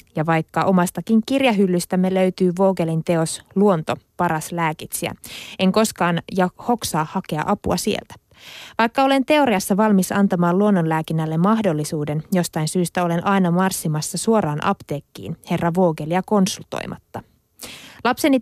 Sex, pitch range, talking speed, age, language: female, 170-210 Hz, 115 wpm, 20-39, Finnish